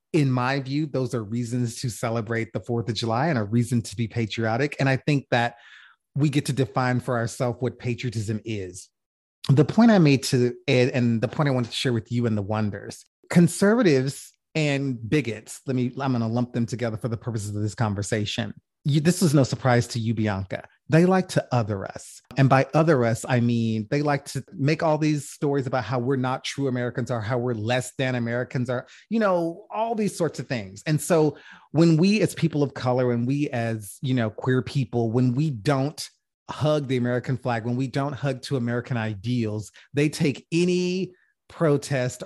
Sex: male